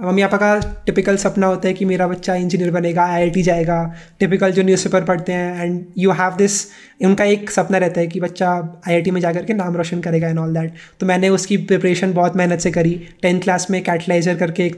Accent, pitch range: native, 175-200 Hz